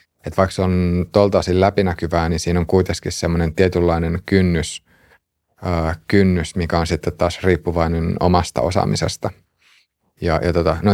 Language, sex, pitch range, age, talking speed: Finnish, male, 85-95 Hz, 30-49, 145 wpm